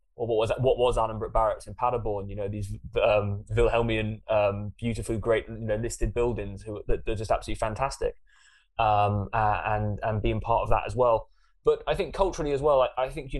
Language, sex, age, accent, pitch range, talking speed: English, male, 20-39, British, 105-130 Hz, 200 wpm